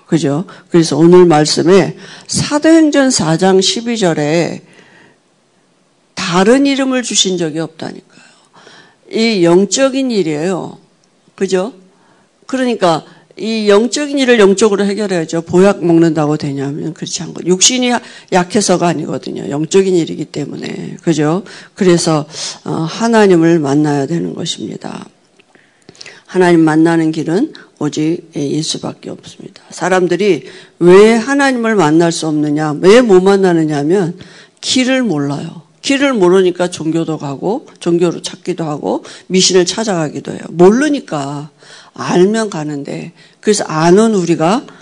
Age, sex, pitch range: 50-69, female, 160-200 Hz